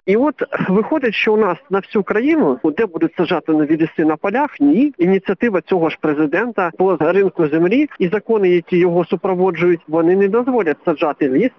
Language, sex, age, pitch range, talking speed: Ukrainian, male, 50-69, 175-235 Hz, 175 wpm